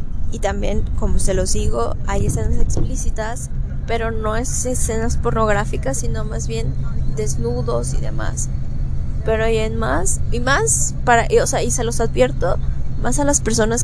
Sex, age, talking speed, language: female, 20-39, 165 wpm, Spanish